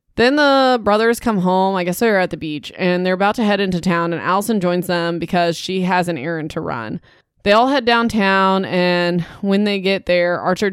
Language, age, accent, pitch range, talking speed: English, 20-39, American, 170-205 Hz, 220 wpm